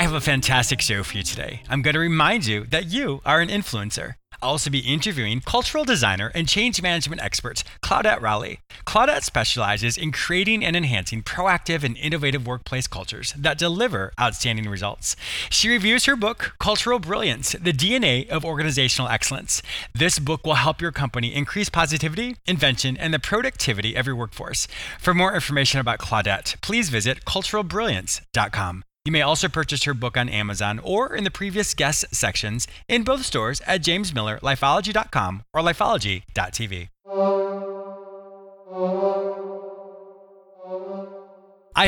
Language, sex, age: English, male, 30-49